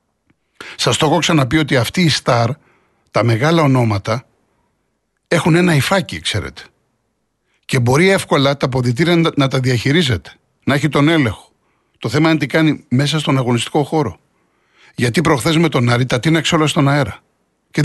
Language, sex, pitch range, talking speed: Greek, male, 130-185 Hz, 160 wpm